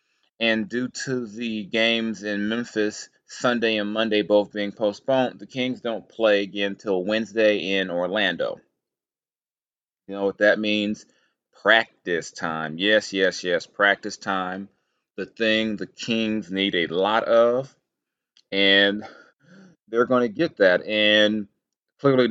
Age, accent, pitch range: 30-49, American, 95-110 Hz